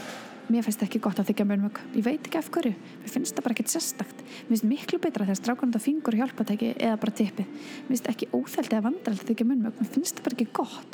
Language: English